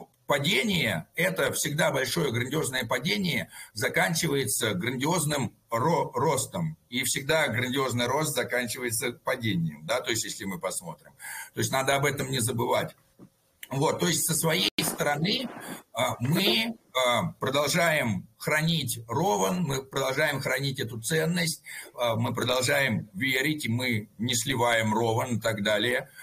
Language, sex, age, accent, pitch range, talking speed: Russian, male, 50-69, native, 125-165 Hz, 125 wpm